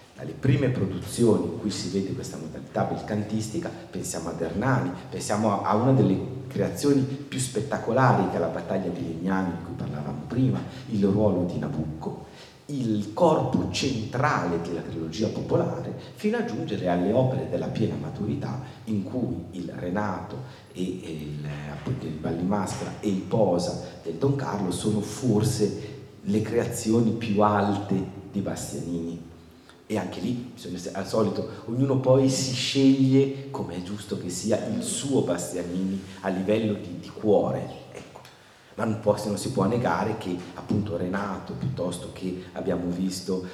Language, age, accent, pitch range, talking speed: Italian, 40-59, native, 85-110 Hz, 150 wpm